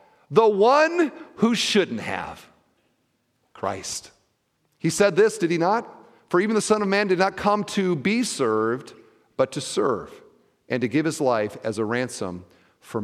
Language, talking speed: English, 165 wpm